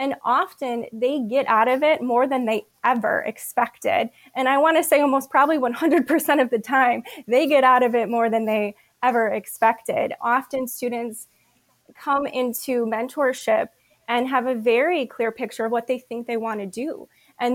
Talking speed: 180 wpm